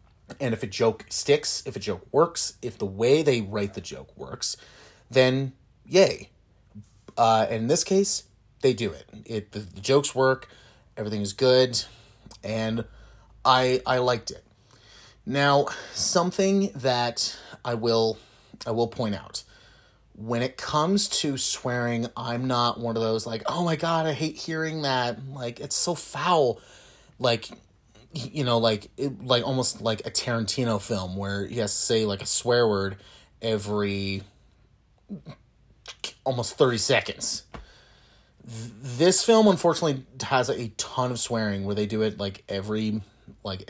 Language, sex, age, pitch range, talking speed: English, male, 30-49, 105-130 Hz, 150 wpm